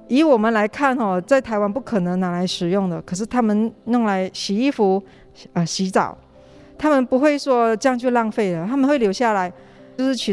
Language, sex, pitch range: Chinese, female, 185-240 Hz